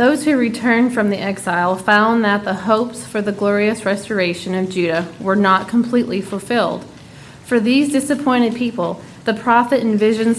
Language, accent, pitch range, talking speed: English, American, 195-235 Hz, 155 wpm